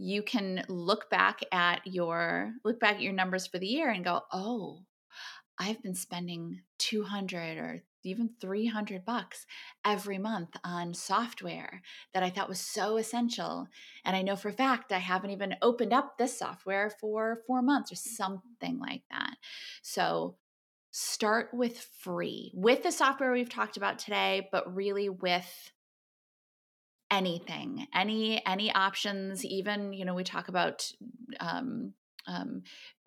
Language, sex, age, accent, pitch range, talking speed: English, female, 20-39, American, 185-245 Hz, 150 wpm